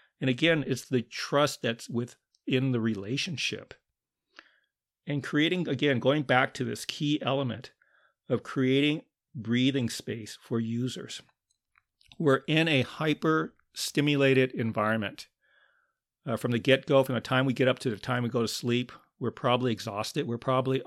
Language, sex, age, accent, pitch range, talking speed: English, male, 40-59, American, 120-135 Hz, 145 wpm